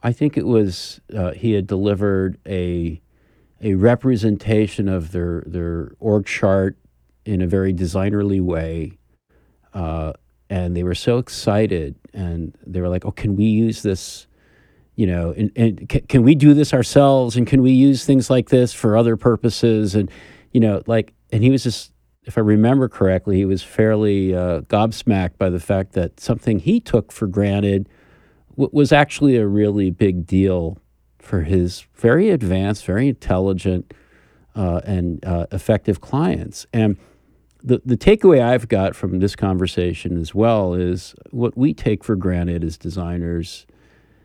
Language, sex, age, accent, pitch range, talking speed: English, male, 50-69, American, 90-115 Hz, 160 wpm